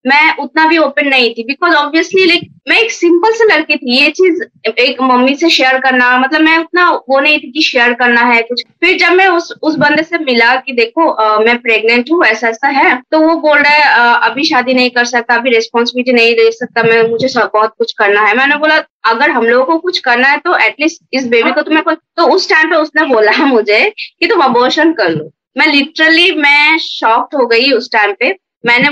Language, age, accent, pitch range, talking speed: Hindi, 20-39, native, 230-305 Hz, 220 wpm